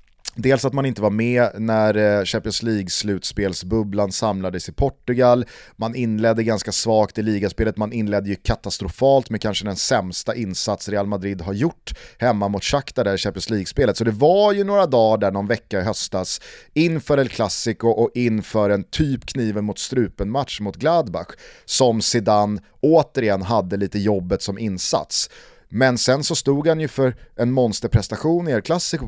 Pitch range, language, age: 100-125 Hz, Swedish, 30-49